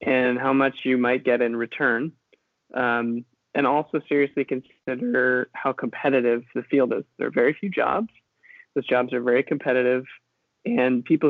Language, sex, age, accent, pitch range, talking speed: English, male, 20-39, American, 125-140 Hz, 160 wpm